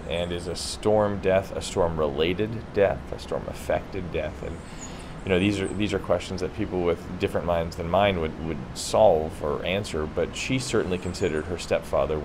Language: English